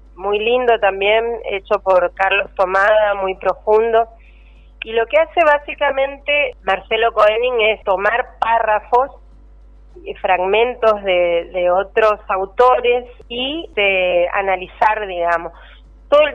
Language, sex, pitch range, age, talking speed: Spanish, female, 190-230 Hz, 30-49, 110 wpm